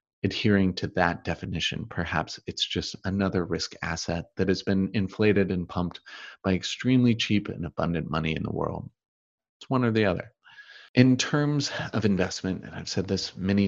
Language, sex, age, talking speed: English, male, 30-49, 170 wpm